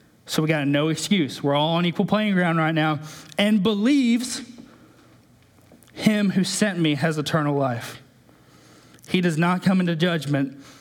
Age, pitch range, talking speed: 20-39, 125-155 Hz, 155 wpm